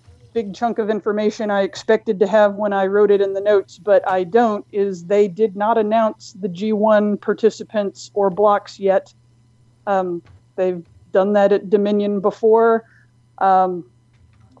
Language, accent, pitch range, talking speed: English, American, 185-215 Hz, 150 wpm